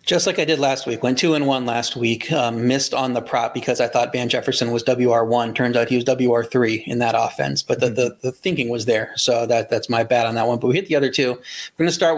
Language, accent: English, American